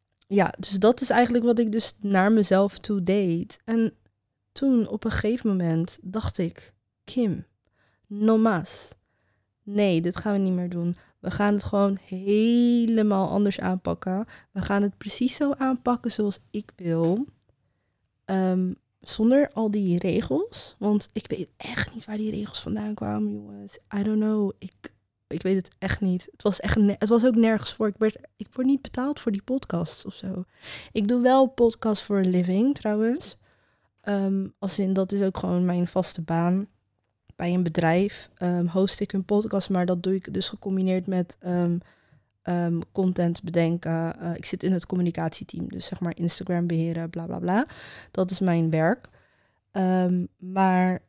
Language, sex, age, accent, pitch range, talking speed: Dutch, female, 20-39, Dutch, 175-215 Hz, 175 wpm